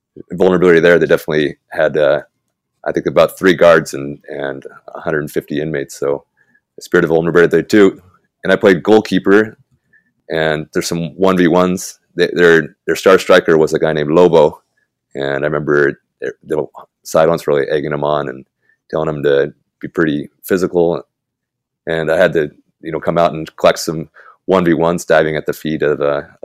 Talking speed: 165 wpm